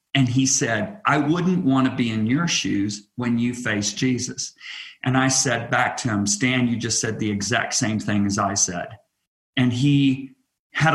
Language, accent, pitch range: English, American, 115-145 Hz